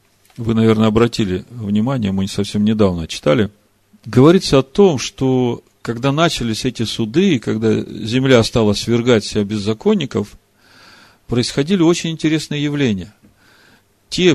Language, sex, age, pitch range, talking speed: Russian, male, 40-59, 105-155 Hz, 115 wpm